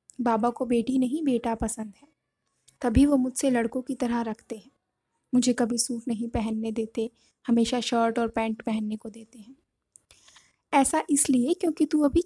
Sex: female